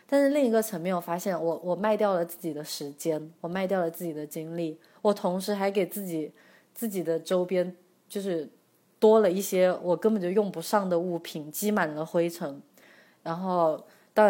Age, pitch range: 20-39, 165-195 Hz